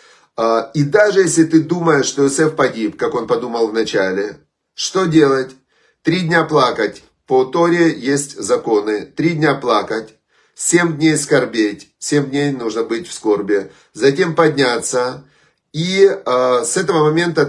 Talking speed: 135 wpm